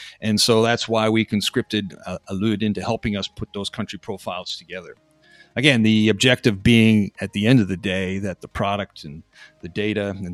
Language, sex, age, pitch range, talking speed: English, male, 40-59, 100-120 Hz, 190 wpm